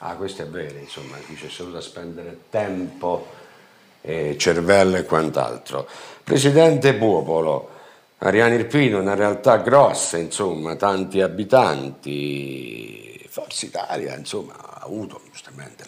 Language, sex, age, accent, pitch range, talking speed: Italian, male, 50-69, native, 95-125 Hz, 115 wpm